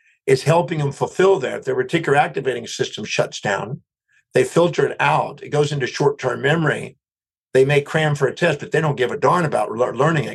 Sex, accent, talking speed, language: male, American, 205 wpm, English